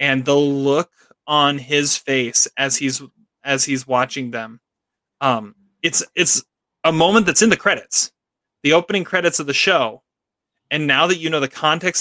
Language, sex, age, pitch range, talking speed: English, male, 30-49, 140-175 Hz, 170 wpm